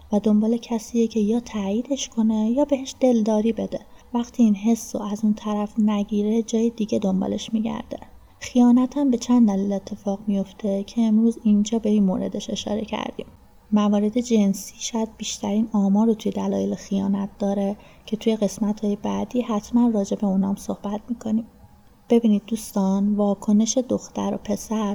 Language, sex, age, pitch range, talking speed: Persian, female, 30-49, 200-230 Hz, 155 wpm